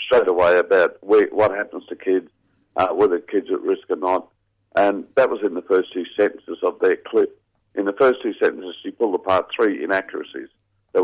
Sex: male